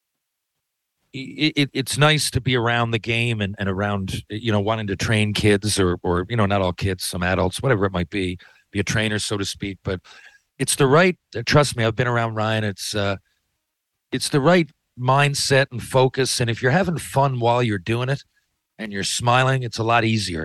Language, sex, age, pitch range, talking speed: English, male, 40-59, 90-115 Hz, 210 wpm